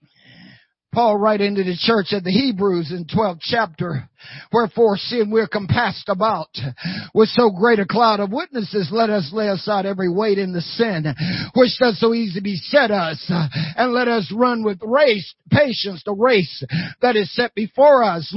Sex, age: male, 50-69